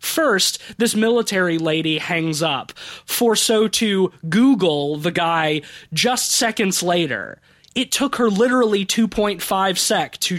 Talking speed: 125 wpm